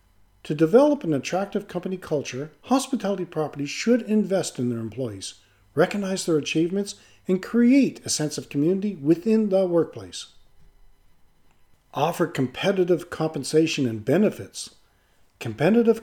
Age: 50-69